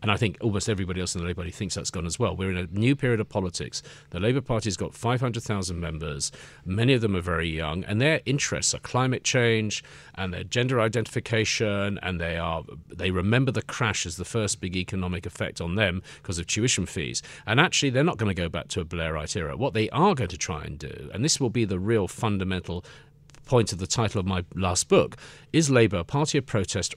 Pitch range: 90-125 Hz